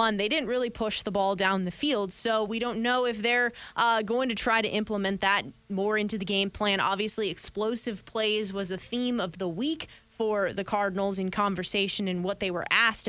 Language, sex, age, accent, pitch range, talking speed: English, female, 20-39, American, 195-225 Hz, 210 wpm